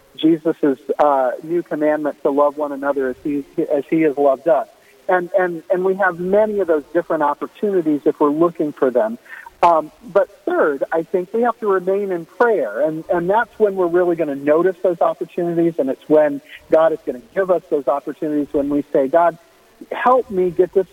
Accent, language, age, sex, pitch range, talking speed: American, English, 50-69, male, 145-190 Hz, 205 wpm